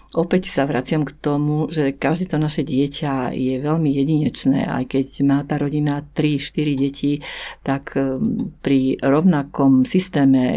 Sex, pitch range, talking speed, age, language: female, 140-160 Hz, 135 wpm, 50-69, Slovak